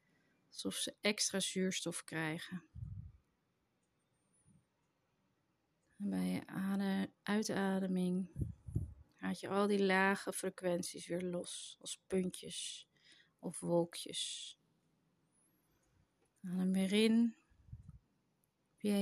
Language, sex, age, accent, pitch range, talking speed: Dutch, female, 30-49, Dutch, 170-200 Hz, 80 wpm